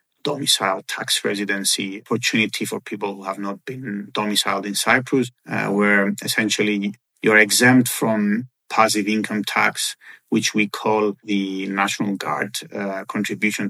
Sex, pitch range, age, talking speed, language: male, 100-115 Hz, 30-49, 130 wpm, English